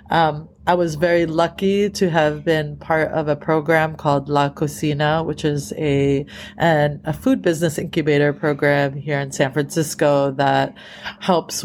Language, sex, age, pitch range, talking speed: English, female, 30-49, 150-195 Hz, 155 wpm